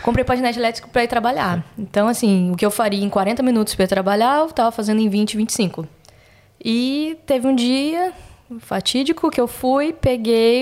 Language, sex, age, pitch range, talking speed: Portuguese, female, 10-29, 195-230 Hz, 180 wpm